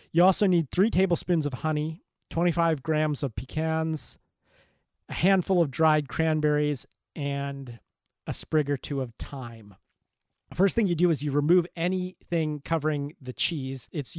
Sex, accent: male, American